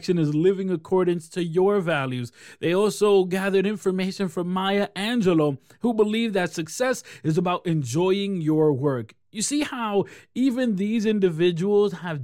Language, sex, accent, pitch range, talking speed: English, male, American, 150-195 Hz, 140 wpm